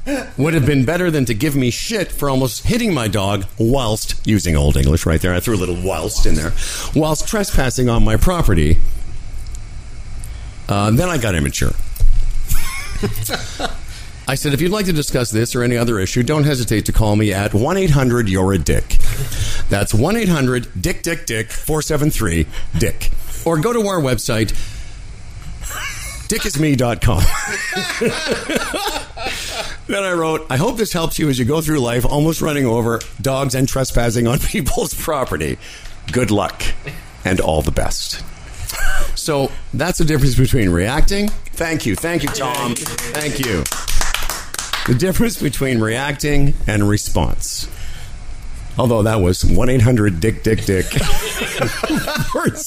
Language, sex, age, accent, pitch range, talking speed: English, male, 50-69, American, 105-150 Hz, 140 wpm